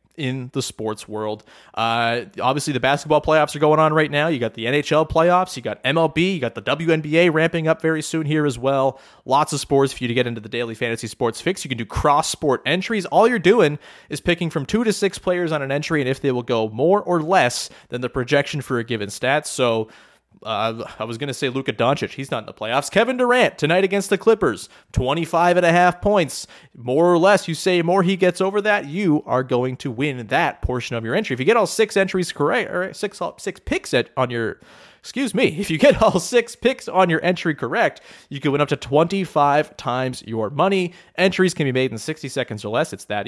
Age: 30-49